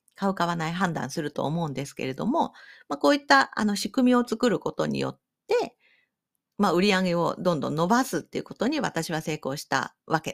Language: Japanese